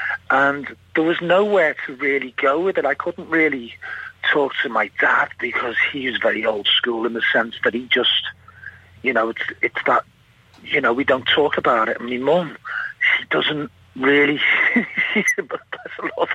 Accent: British